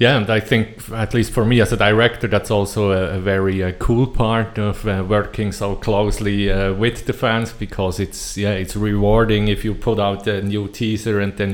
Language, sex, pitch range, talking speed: English, male, 95-115 Hz, 220 wpm